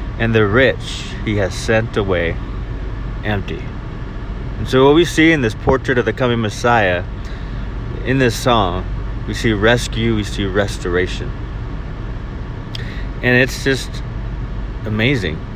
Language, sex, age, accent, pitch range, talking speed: English, male, 30-49, American, 105-125 Hz, 125 wpm